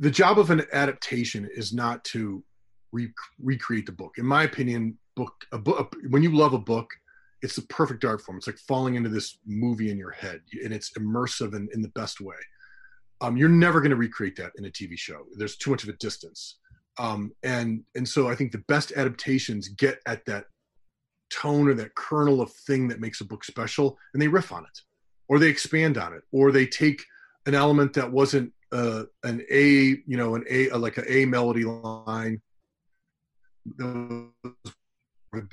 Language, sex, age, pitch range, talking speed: English, male, 30-49, 110-140 Hz, 190 wpm